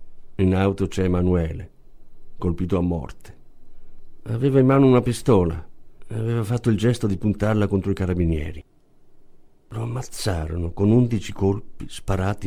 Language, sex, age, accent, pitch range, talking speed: Italian, male, 50-69, native, 90-105 Hz, 135 wpm